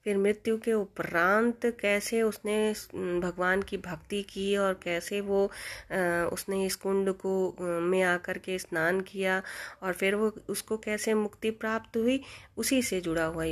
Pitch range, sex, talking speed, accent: 170-200 Hz, female, 150 wpm, native